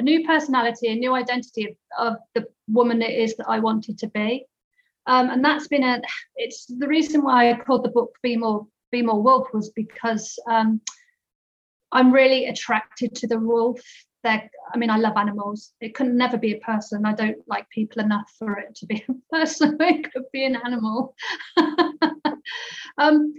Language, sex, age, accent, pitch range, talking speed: English, female, 30-49, British, 225-295 Hz, 185 wpm